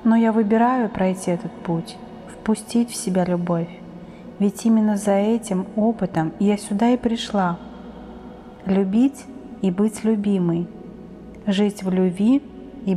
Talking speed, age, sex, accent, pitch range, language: 125 wpm, 30-49, female, native, 195-235 Hz, Russian